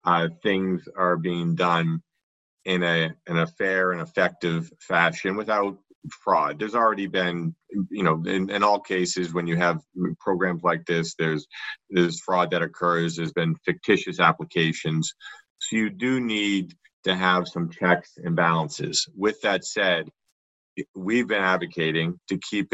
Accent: American